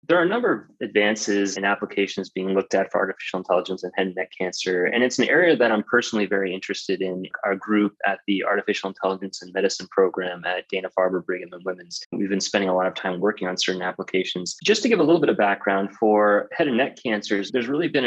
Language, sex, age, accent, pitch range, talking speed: English, male, 20-39, American, 95-115 Hz, 235 wpm